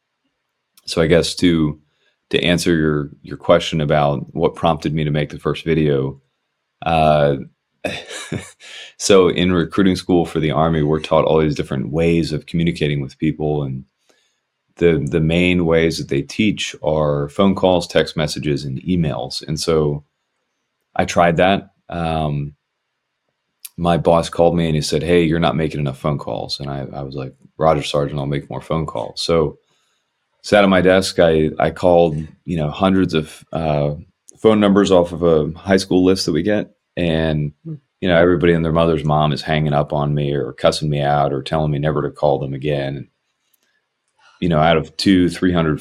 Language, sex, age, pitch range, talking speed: English, male, 30-49, 75-85 Hz, 180 wpm